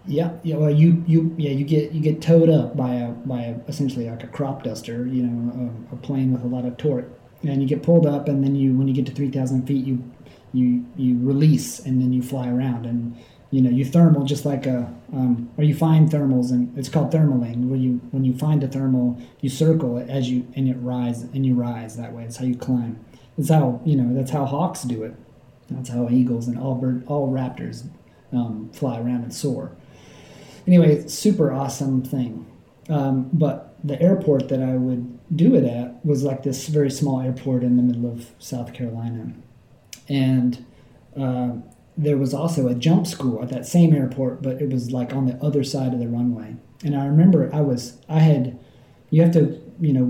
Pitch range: 125-145 Hz